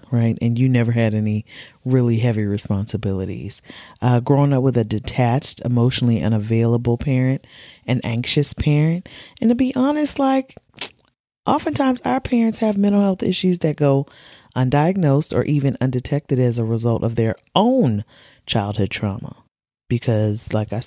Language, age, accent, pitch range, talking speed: English, 30-49, American, 115-140 Hz, 145 wpm